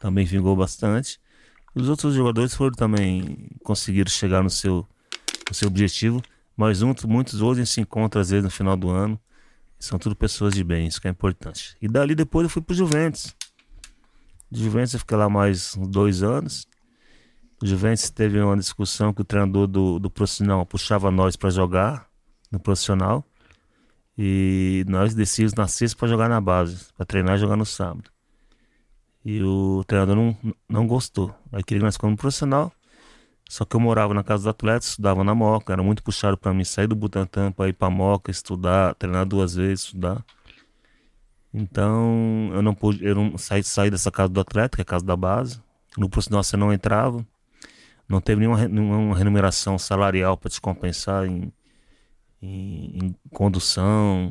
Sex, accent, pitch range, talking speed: male, Brazilian, 95-110 Hz, 175 wpm